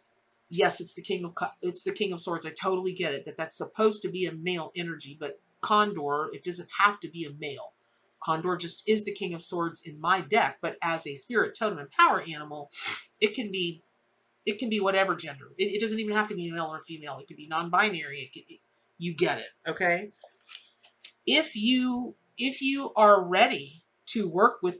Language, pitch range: English, 160-210 Hz